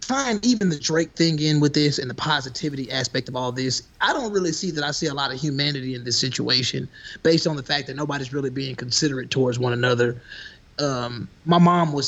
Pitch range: 130-165 Hz